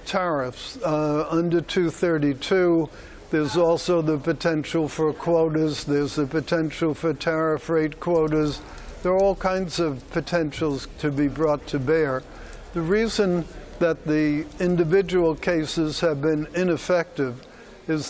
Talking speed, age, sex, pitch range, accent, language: 125 wpm, 60-79, male, 150-175 Hz, American, English